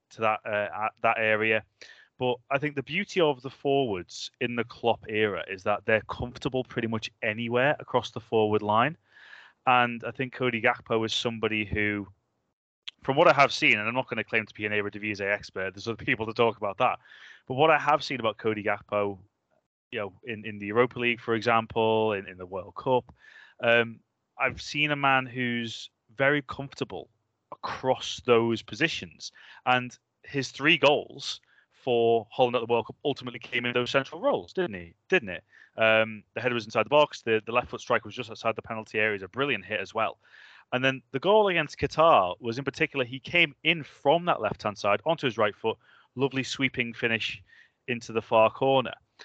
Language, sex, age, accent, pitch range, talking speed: English, male, 20-39, British, 110-140 Hz, 200 wpm